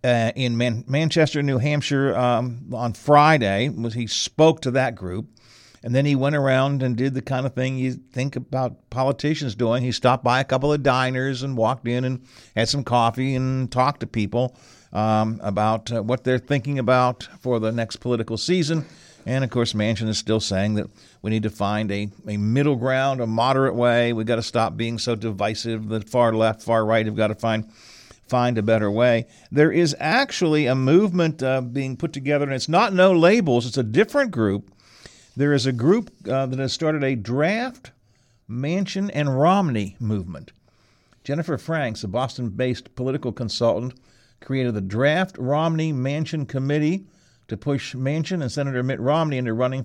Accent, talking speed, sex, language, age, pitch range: American, 185 wpm, male, English, 50-69, 115-140 Hz